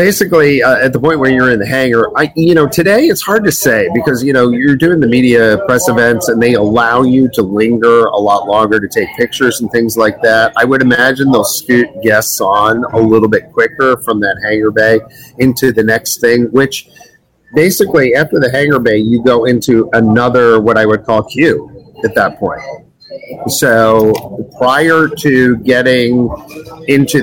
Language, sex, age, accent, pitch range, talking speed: English, male, 40-59, American, 110-135 Hz, 185 wpm